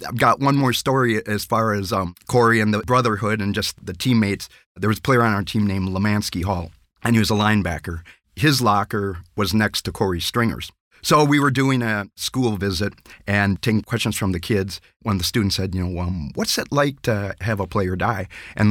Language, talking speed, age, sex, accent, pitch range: English, 215 wpm, 40-59, male, American, 95-115 Hz